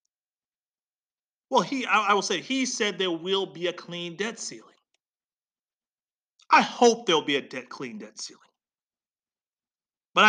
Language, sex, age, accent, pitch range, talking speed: English, male, 40-59, American, 195-245 Hz, 145 wpm